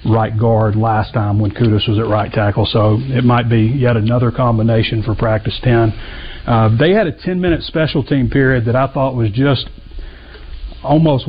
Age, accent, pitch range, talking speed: 40-59, American, 110-130 Hz, 180 wpm